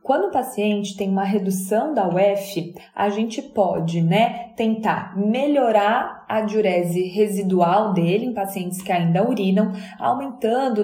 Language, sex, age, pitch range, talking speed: Portuguese, female, 20-39, 200-240 Hz, 135 wpm